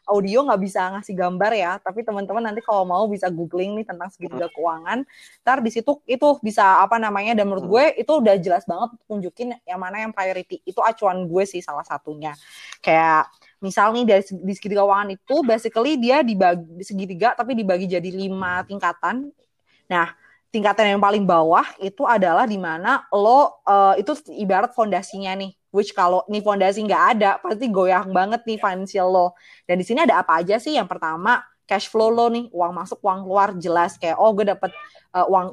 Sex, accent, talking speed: female, native, 180 wpm